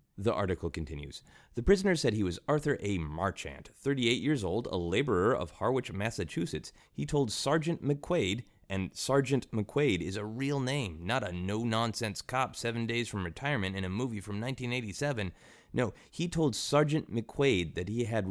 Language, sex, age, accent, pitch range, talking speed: English, male, 30-49, American, 95-145 Hz, 165 wpm